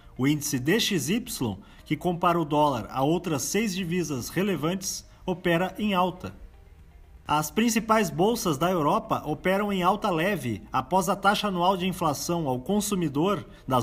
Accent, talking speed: Brazilian, 145 wpm